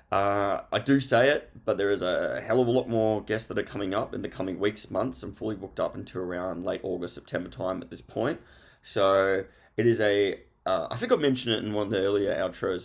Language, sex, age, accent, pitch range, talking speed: English, male, 20-39, Australian, 95-115 Hz, 245 wpm